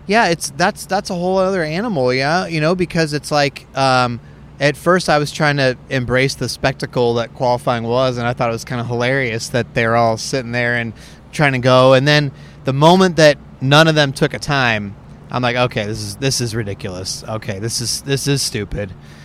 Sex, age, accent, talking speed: male, 30-49, American, 215 wpm